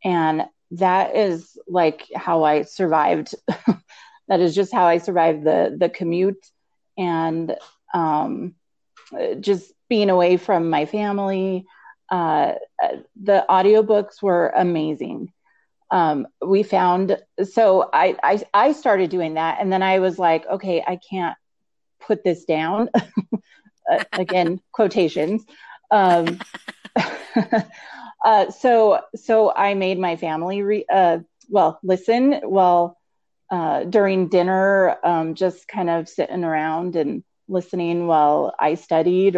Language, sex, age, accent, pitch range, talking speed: English, female, 30-49, American, 170-210 Hz, 120 wpm